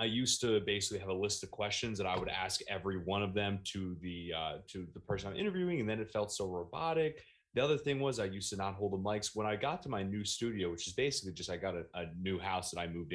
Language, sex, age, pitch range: English, male, 20-39, 95-110 Hz